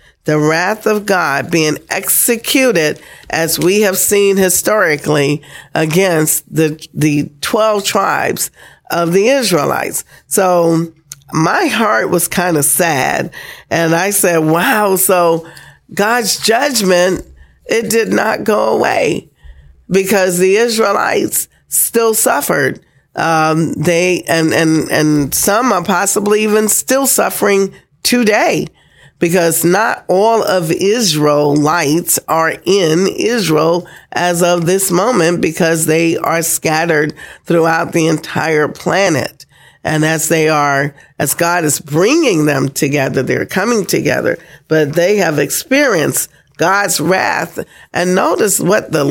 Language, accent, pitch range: English, American, 155-190 Hz